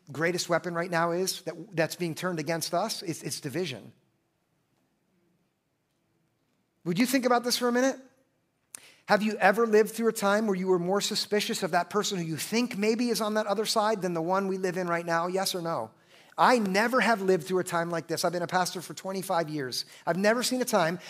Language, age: English, 50-69